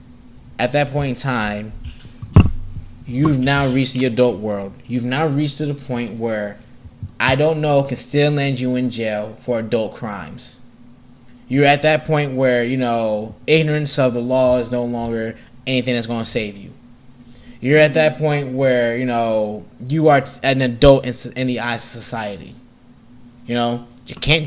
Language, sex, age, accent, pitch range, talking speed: English, male, 20-39, American, 115-135 Hz, 170 wpm